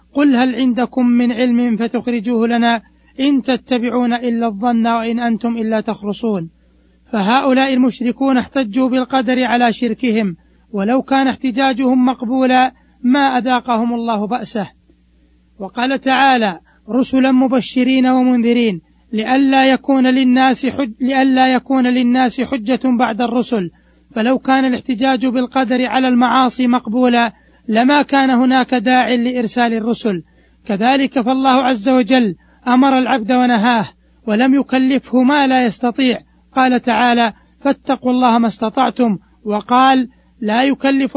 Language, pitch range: Arabic, 235-260 Hz